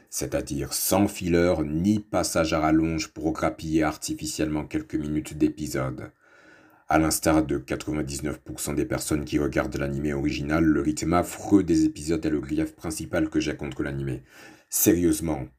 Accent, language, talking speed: French, French, 140 wpm